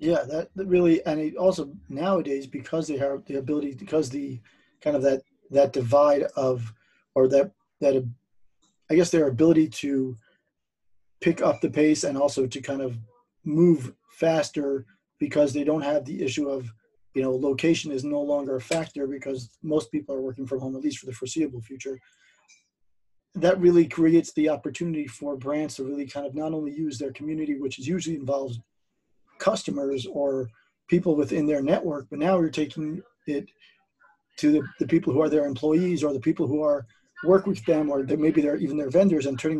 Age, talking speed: 40-59, 185 wpm